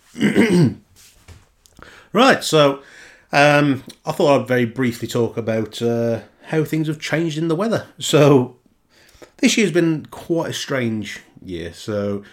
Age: 30-49